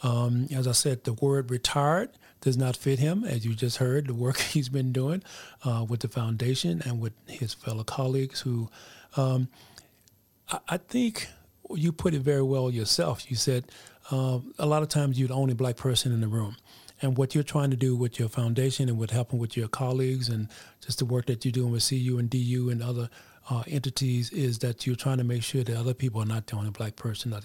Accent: American